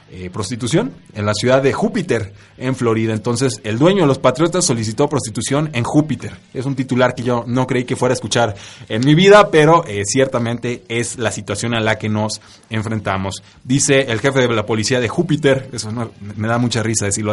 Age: 30-49